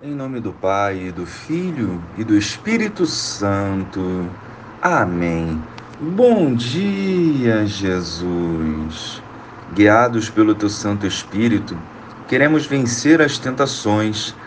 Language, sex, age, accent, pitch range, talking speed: Portuguese, male, 40-59, Brazilian, 100-135 Hz, 95 wpm